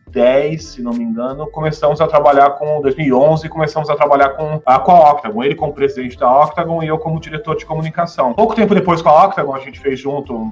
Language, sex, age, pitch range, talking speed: Portuguese, male, 20-39, 125-155 Hz, 220 wpm